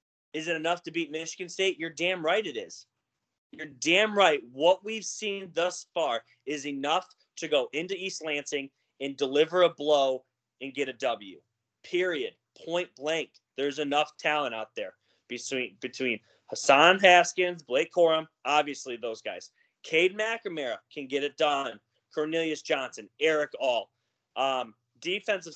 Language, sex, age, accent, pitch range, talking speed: English, male, 20-39, American, 145-190 Hz, 150 wpm